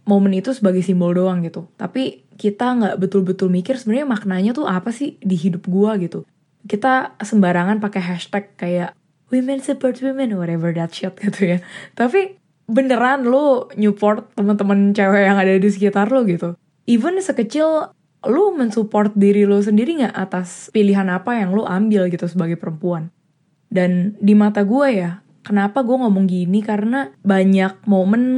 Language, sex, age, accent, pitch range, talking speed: Indonesian, female, 20-39, native, 180-220 Hz, 155 wpm